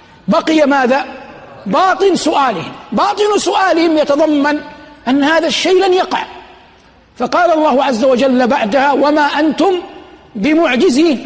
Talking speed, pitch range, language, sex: 105 wpm, 270-325 Hz, Arabic, male